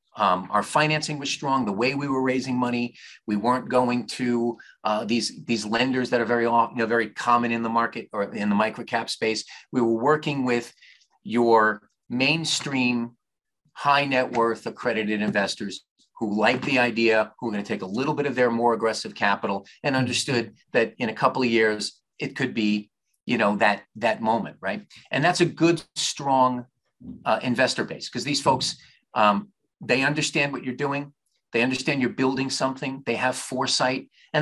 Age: 40-59